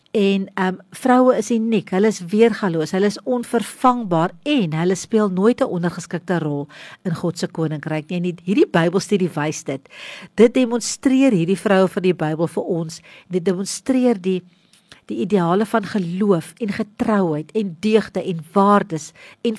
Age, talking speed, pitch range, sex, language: 50-69, 160 wpm, 170-220 Hz, female, English